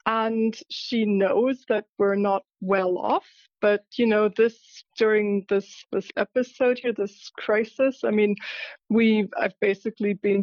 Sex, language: female, English